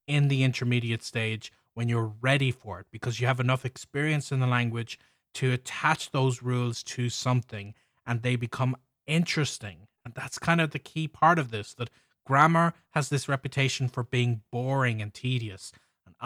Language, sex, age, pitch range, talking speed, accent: English, male, 20-39, 120-145 Hz, 175 wpm, Irish